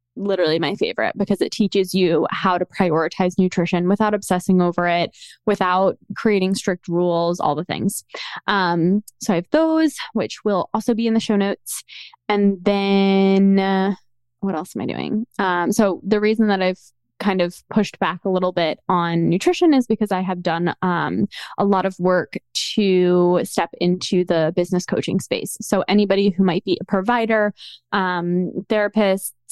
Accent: American